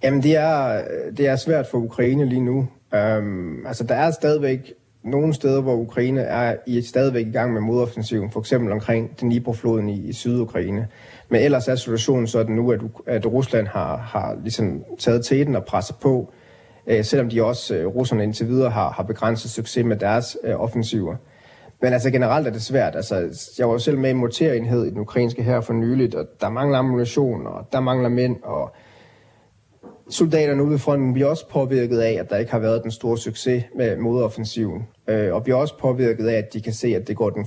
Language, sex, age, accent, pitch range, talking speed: Danish, male, 30-49, native, 110-130 Hz, 200 wpm